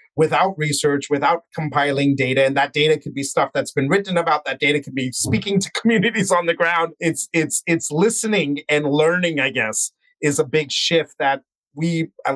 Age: 40-59